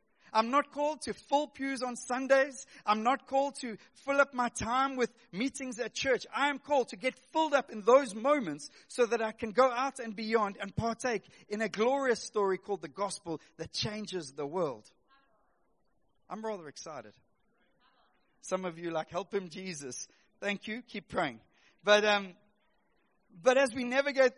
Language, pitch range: English, 200-260 Hz